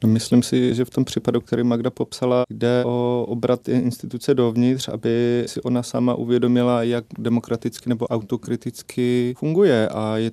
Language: Czech